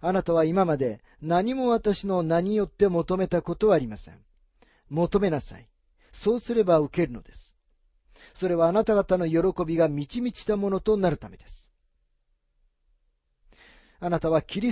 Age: 40-59